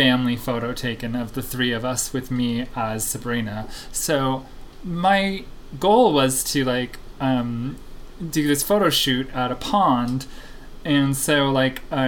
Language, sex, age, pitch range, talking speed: English, male, 20-39, 130-155 Hz, 145 wpm